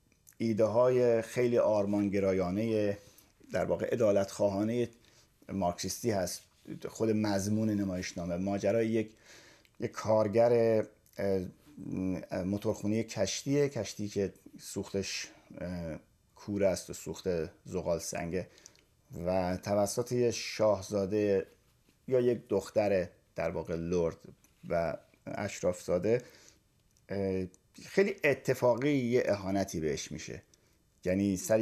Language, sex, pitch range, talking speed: Persian, male, 100-125 Hz, 95 wpm